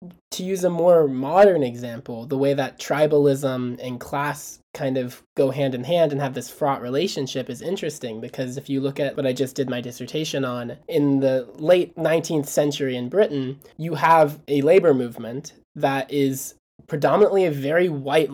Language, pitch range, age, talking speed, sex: English, 130-155 Hz, 20-39, 180 wpm, male